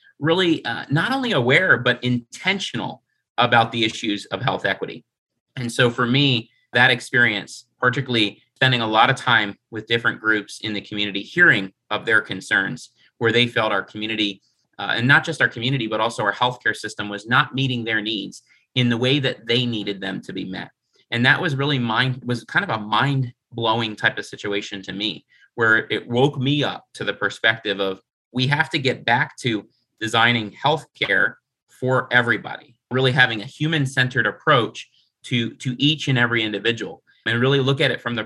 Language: English